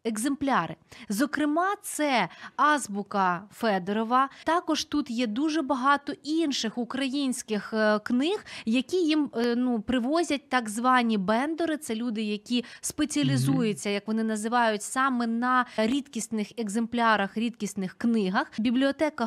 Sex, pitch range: female, 220-280 Hz